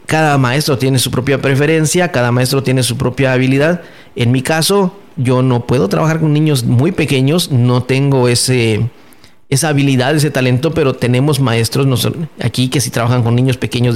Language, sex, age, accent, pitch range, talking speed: Spanish, male, 40-59, Mexican, 120-140 Hz, 185 wpm